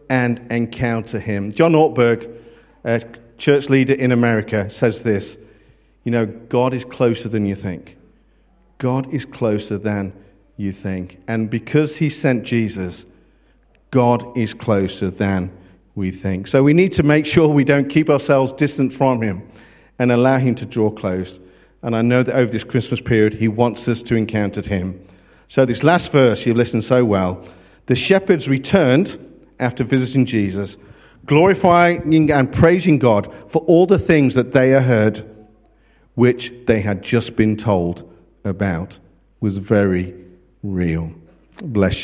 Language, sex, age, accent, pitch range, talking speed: English, male, 50-69, British, 105-130 Hz, 155 wpm